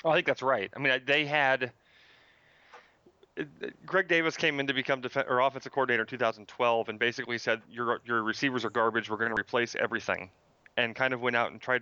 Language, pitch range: English, 105-125 Hz